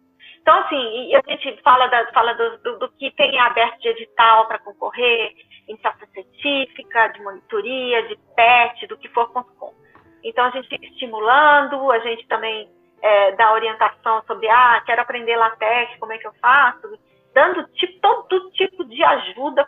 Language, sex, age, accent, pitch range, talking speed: Portuguese, female, 30-49, Brazilian, 225-295 Hz, 160 wpm